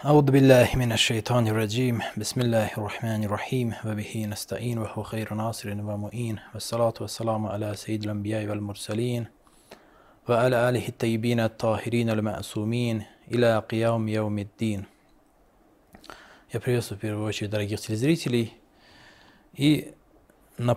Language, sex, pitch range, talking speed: Russian, male, 110-125 Hz, 50 wpm